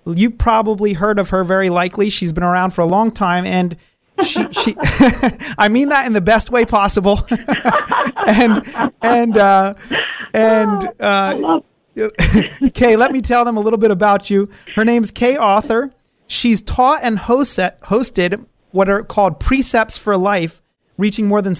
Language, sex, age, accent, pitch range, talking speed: English, male, 30-49, American, 185-225 Hz, 160 wpm